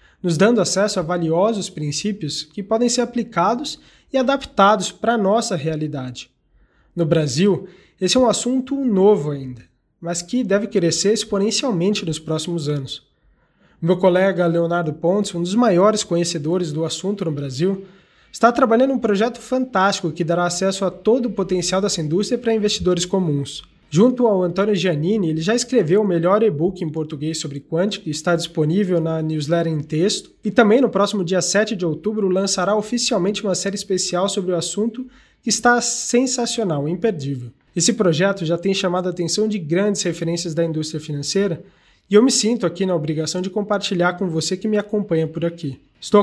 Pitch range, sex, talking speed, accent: 170-210 Hz, male, 170 wpm, Brazilian